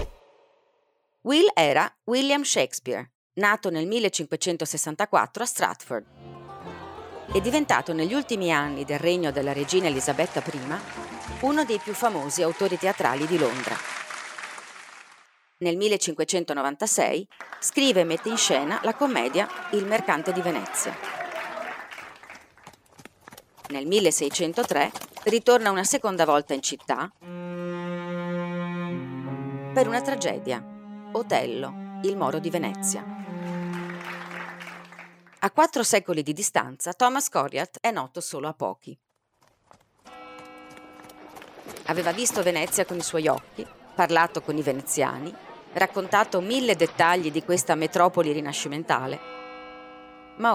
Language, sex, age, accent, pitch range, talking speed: Italian, female, 40-59, native, 150-205 Hz, 105 wpm